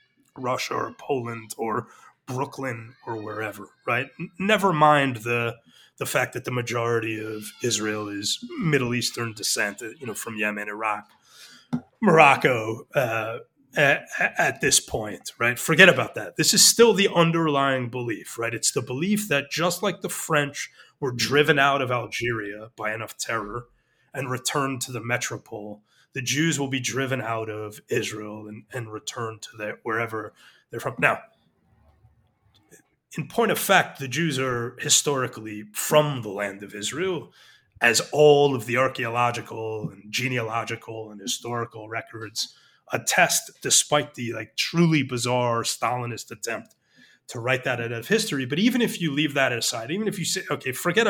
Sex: male